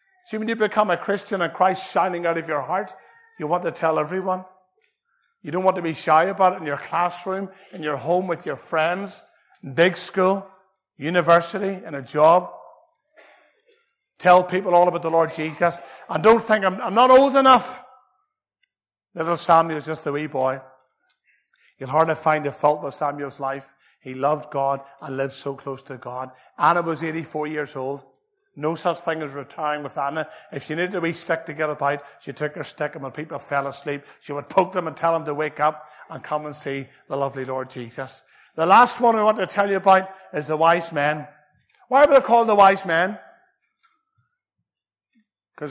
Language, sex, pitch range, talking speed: English, male, 150-215 Hz, 195 wpm